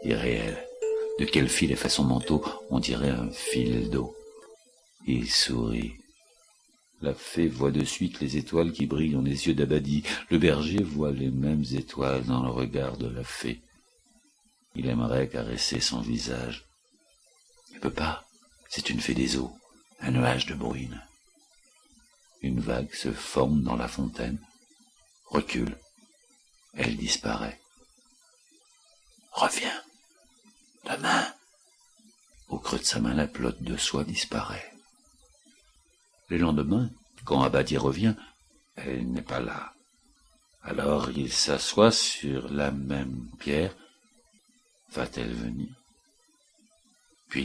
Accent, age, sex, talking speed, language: French, 60-79, male, 125 wpm, French